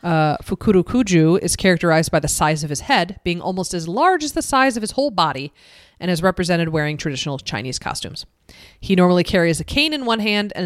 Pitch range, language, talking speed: 155-195 Hz, English, 210 wpm